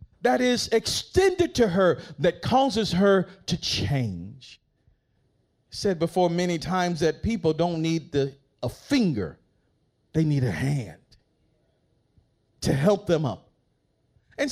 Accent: American